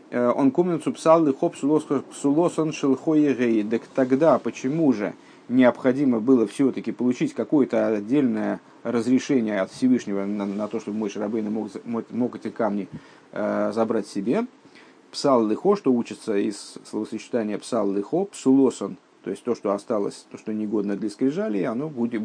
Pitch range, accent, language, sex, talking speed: 110-165 Hz, native, Russian, male, 145 wpm